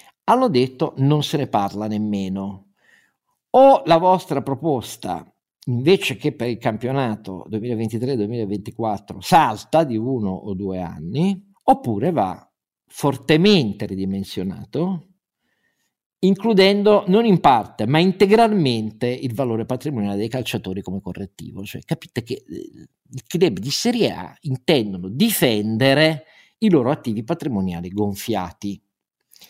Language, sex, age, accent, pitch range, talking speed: Italian, male, 50-69, native, 105-165 Hz, 110 wpm